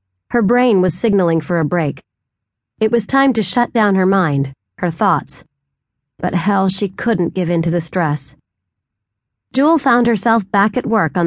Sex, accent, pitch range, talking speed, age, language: female, American, 150-220 Hz, 175 wpm, 30-49, English